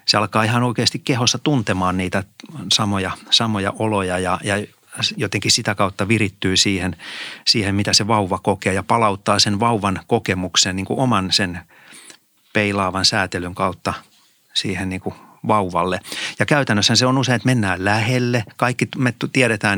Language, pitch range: Finnish, 100-120 Hz